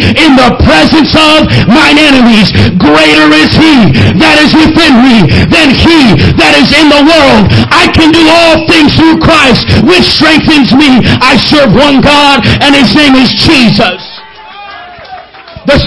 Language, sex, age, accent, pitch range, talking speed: English, male, 50-69, American, 260-310 Hz, 150 wpm